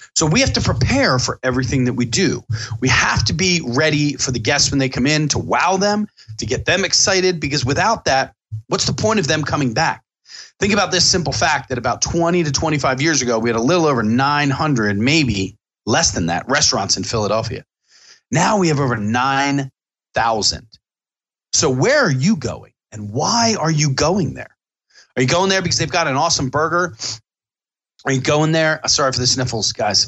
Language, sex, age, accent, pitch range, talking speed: English, male, 30-49, American, 115-155 Hz, 200 wpm